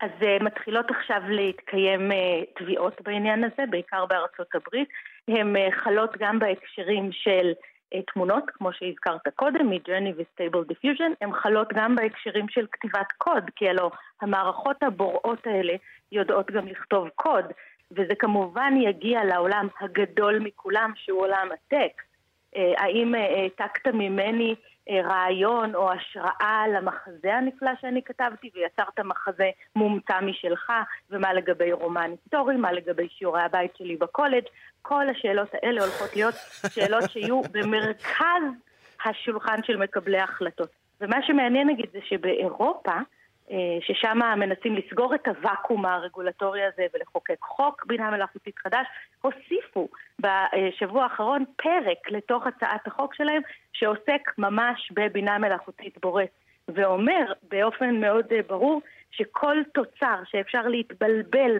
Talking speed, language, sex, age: 120 wpm, Hebrew, female, 30-49